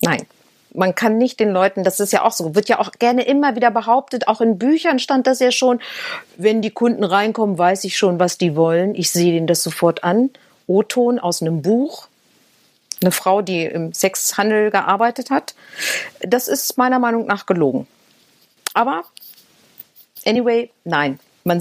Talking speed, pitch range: 170 wpm, 180-230 Hz